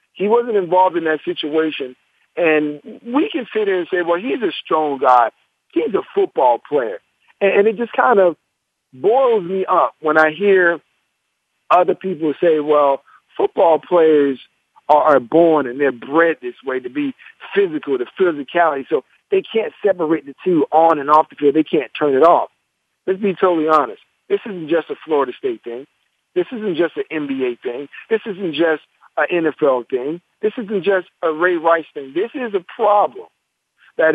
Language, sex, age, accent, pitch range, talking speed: English, male, 50-69, American, 155-220 Hz, 180 wpm